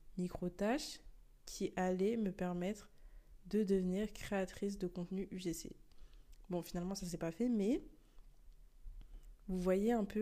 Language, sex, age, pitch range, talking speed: French, female, 20-39, 175-205 Hz, 135 wpm